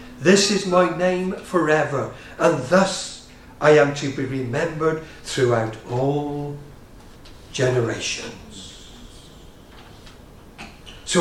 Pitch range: 130-175 Hz